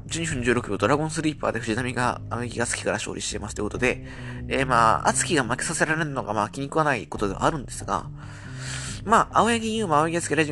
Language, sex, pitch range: Japanese, male, 100-150 Hz